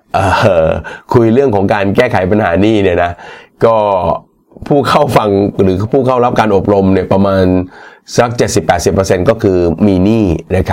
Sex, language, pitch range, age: male, Thai, 90-110 Hz, 30-49